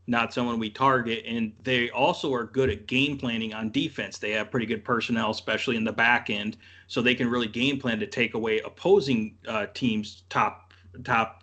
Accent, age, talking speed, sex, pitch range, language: American, 30-49, 200 wpm, male, 110-130 Hz, English